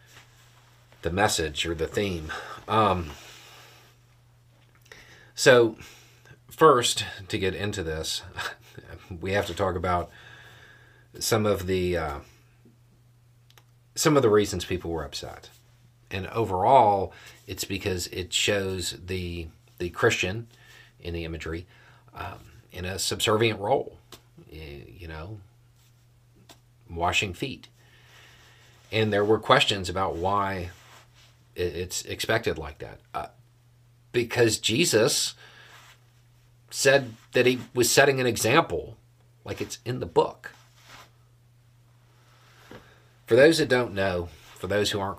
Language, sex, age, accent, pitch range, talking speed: English, male, 40-59, American, 95-120 Hz, 110 wpm